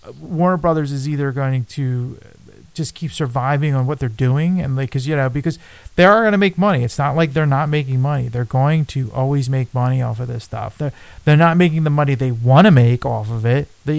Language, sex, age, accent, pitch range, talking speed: English, male, 30-49, American, 125-150 Hz, 240 wpm